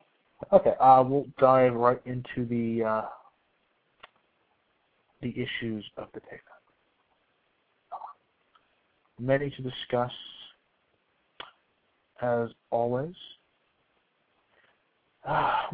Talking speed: 70 wpm